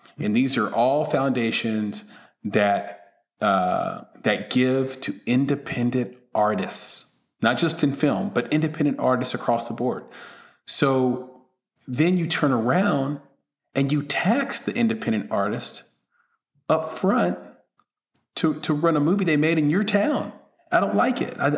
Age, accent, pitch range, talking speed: 30-49, American, 120-160 Hz, 140 wpm